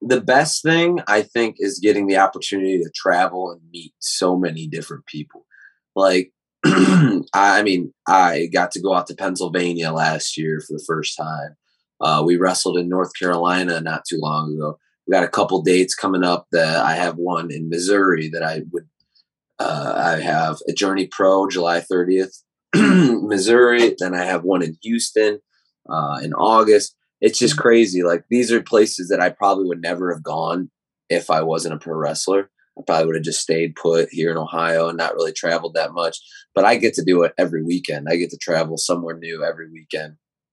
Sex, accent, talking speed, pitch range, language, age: male, American, 190 wpm, 80-105 Hz, English, 20-39